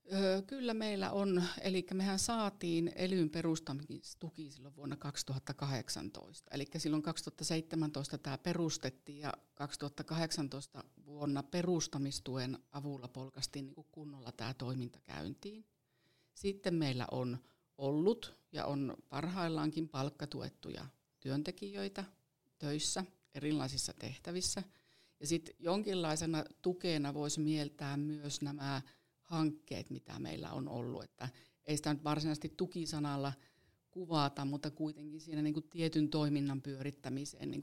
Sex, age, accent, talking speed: female, 50-69, native, 105 wpm